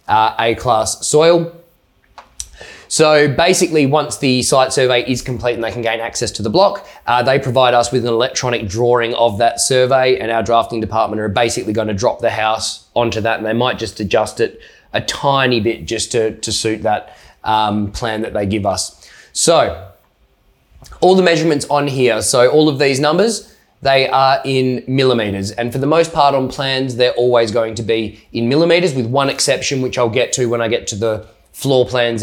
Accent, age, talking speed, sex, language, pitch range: Australian, 20-39, 195 wpm, male, English, 110-140 Hz